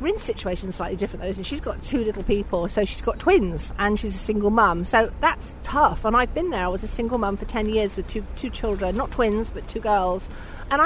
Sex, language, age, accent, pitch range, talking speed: female, English, 40-59, British, 210-260 Hz, 255 wpm